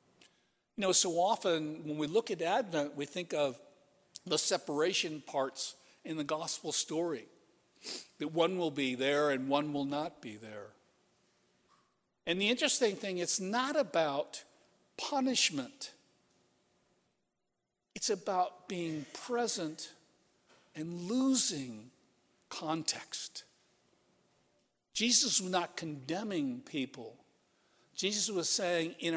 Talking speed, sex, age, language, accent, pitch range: 110 wpm, male, 60-79, English, American, 140-185 Hz